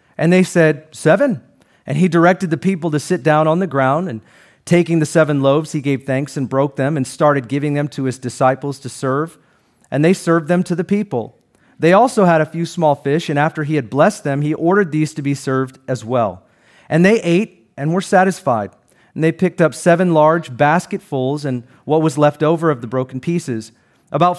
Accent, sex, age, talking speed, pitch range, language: American, male, 40-59, 210 wpm, 135-170 Hz, English